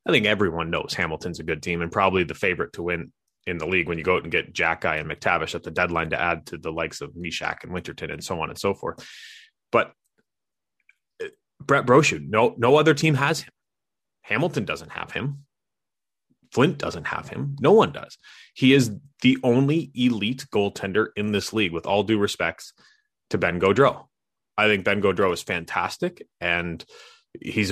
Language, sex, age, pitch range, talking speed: English, male, 30-49, 105-135 Hz, 195 wpm